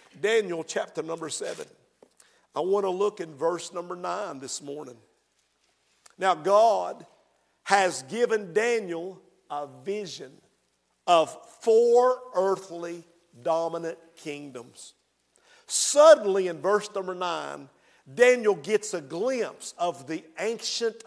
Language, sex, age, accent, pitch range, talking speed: English, male, 50-69, American, 175-235 Hz, 110 wpm